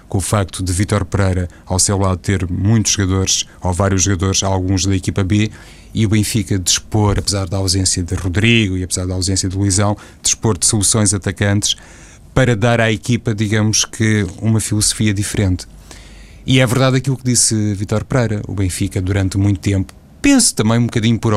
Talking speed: 185 wpm